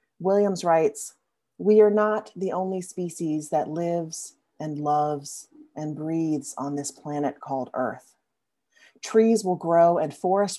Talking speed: 135 wpm